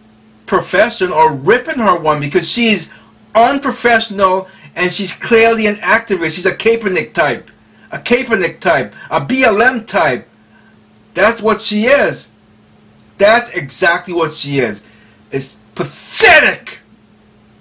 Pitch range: 115-190 Hz